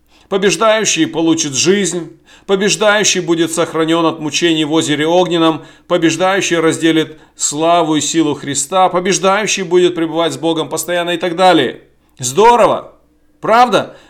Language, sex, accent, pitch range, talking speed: Russian, male, native, 150-195 Hz, 120 wpm